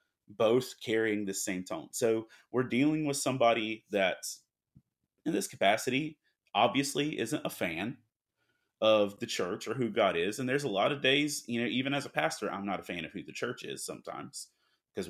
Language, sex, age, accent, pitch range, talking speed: English, male, 30-49, American, 105-130 Hz, 190 wpm